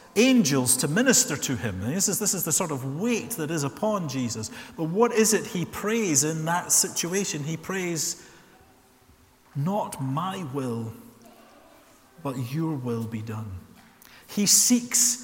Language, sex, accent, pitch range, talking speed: English, male, British, 130-190 Hz, 145 wpm